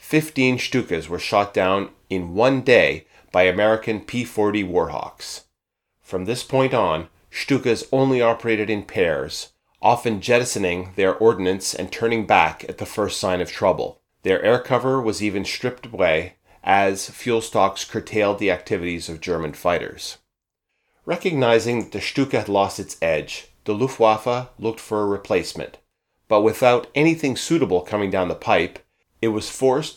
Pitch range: 95-125 Hz